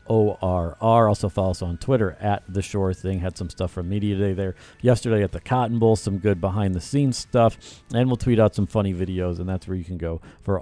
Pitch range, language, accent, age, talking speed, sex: 95-120 Hz, English, American, 40-59, 250 wpm, male